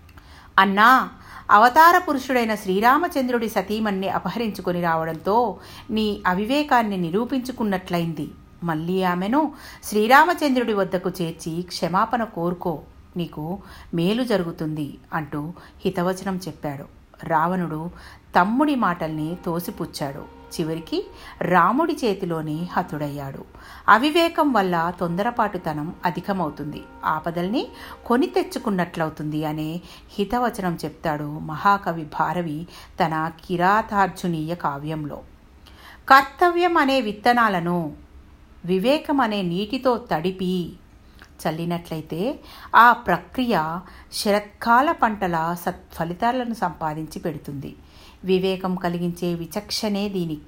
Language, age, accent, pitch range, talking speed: Telugu, 60-79, native, 165-225 Hz, 75 wpm